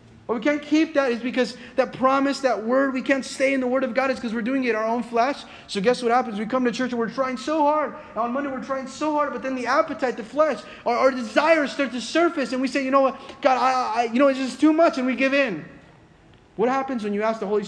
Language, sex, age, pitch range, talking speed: English, male, 30-49, 180-260 Hz, 290 wpm